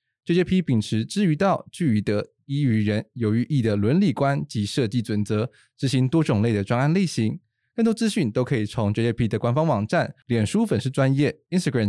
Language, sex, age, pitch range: Chinese, male, 20-39, 110-145 Hz